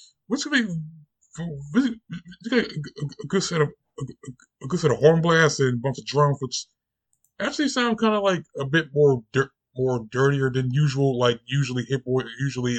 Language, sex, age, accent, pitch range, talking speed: English, male, 20-39, American, 120-150 Hz, 175 wpm